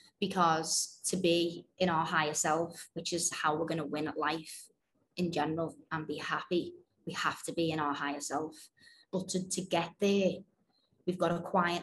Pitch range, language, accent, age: 160-180 Hz, English, British, 20-39